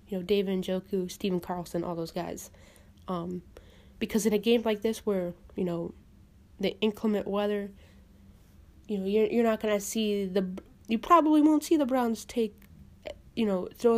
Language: English